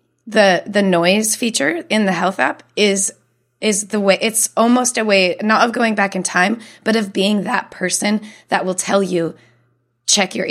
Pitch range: 175-220 Hz